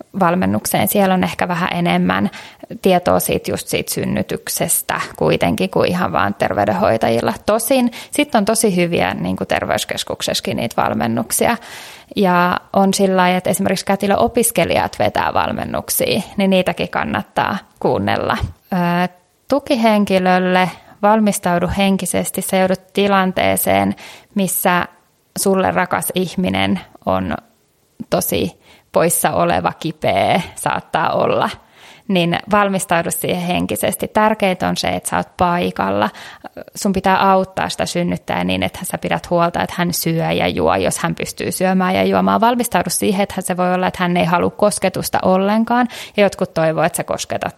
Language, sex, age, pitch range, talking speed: Finnish, female, 20-39, 170-195 Hz, 130 wpm